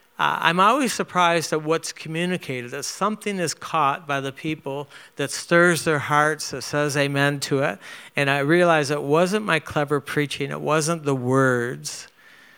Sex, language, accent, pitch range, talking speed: male, English, American, 130-155 Hz, 165 wpm